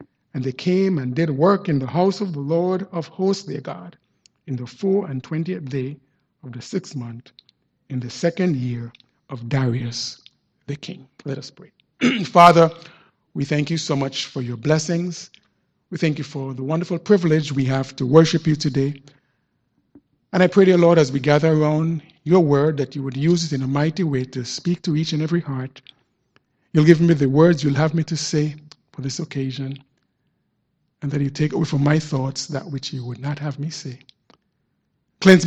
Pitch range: 135-170 Hz